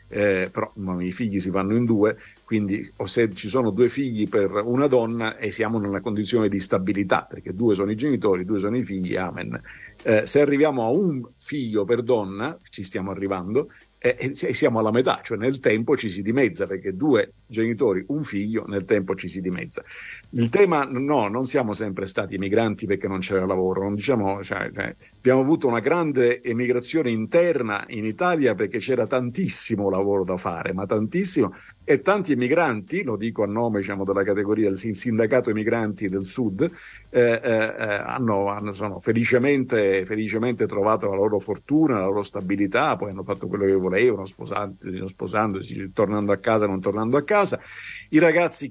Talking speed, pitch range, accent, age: 175 wpm, 100-125 Hz, native, 50-69